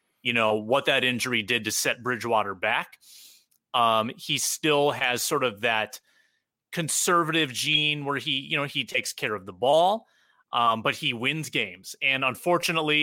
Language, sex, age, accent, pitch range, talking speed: English, male, 30-49, American, 125-165 Hz, 165 wpm